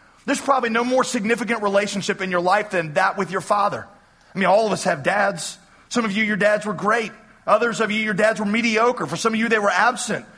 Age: 40-59